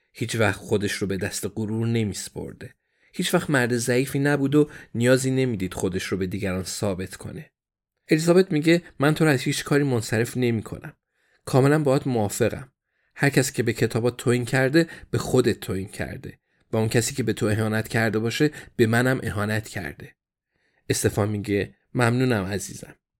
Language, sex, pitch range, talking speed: Persian, male, 105-125 Hz, 165 wpm